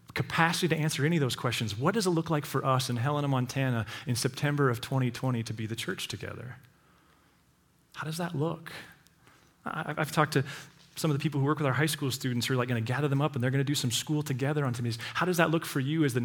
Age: 30-49